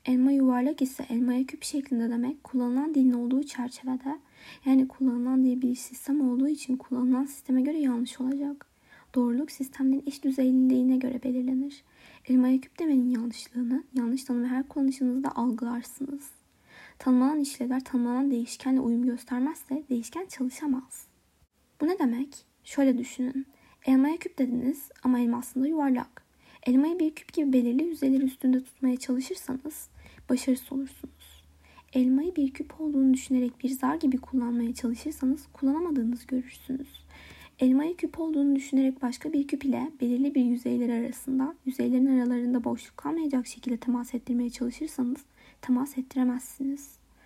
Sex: female